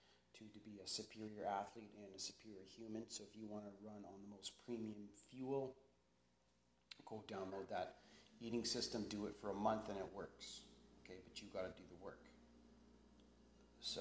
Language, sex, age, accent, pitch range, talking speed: English, male, 30-49, American, 100-115 Hz, 185 wpm